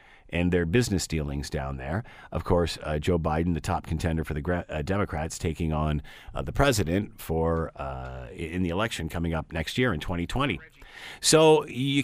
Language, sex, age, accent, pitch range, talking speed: English, male, 50-69, American, 85-125 Hz, 185 wpm